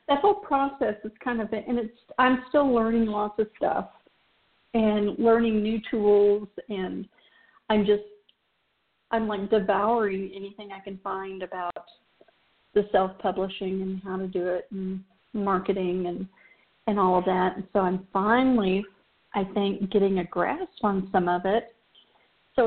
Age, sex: 50-69, female